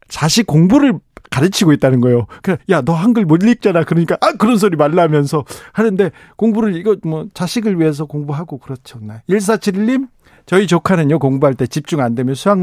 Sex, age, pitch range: male, 40-59, 135-190 Hz